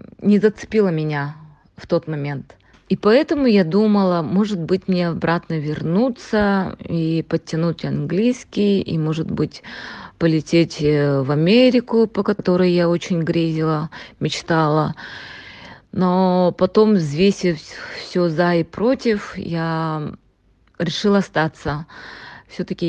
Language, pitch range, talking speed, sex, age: Russian, 155-180 Hz, 105 wpm, female, 20-39